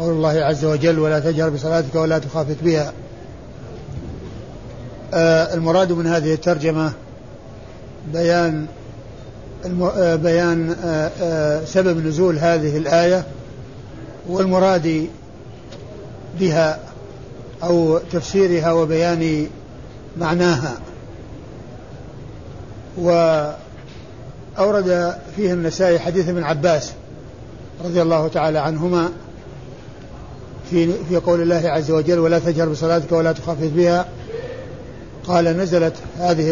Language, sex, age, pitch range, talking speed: Arabic, male, 60-79, 130-175 Hz, 85 wpm